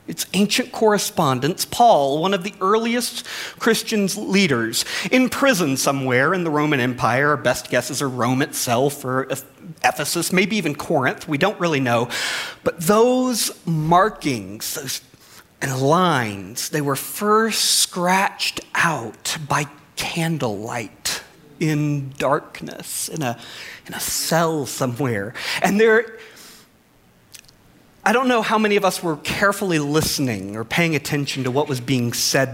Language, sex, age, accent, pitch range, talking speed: English, male, 40-59, American, 140-215 Hz, 130 wpm